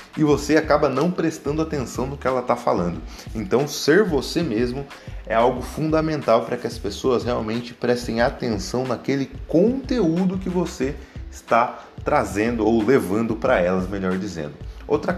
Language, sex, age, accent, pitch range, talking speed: Portuguese, male, 30-49, Brazilian, 115-180 Hz, 150 wpm